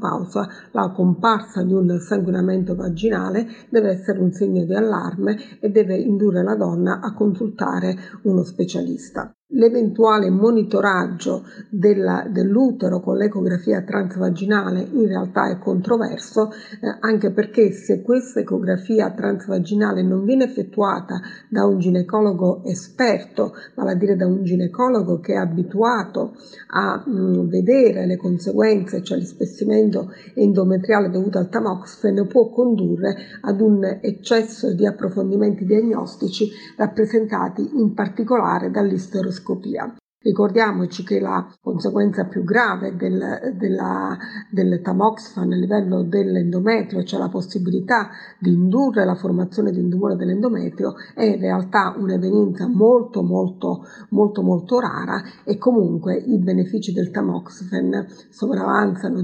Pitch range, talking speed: 185-220 Hz, 120 wpm